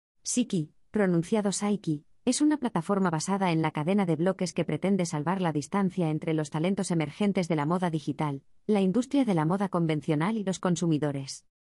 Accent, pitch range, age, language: Spanish, 160-210 Hz, 20-39, Spanish